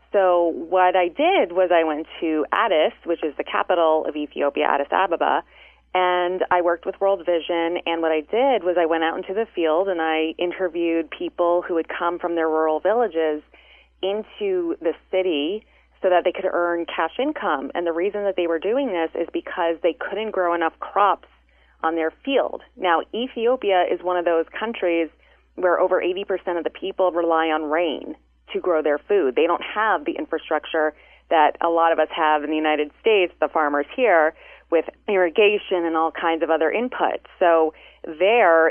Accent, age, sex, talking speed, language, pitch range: American, 30-49, female, 190 wpm, English, 160-185 Hz